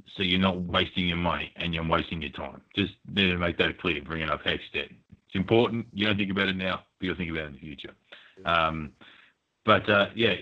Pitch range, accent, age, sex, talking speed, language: 80-100 Hz, Australian, 30-49, male, 235 wpm, English